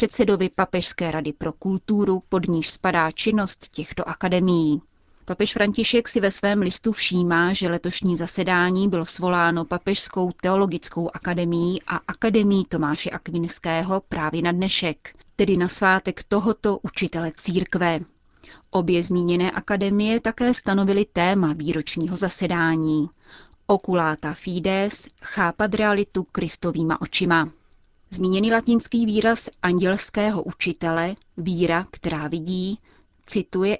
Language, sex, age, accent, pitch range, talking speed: Czech, female, 30-49, native, 170-200 Hz, 110 wpm